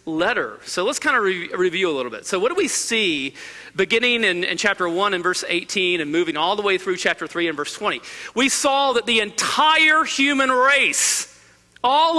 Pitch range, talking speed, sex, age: 175-250 Hz, 205 wpm, male, 40-59